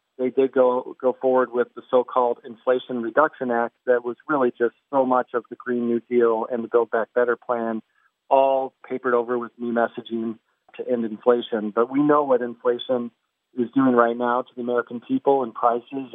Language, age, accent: English, 40-59, American